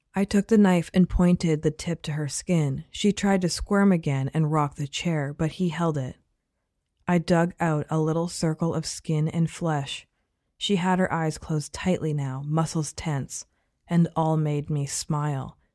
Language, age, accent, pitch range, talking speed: English, 20-39, American, 145-170 Hz, 185 wpm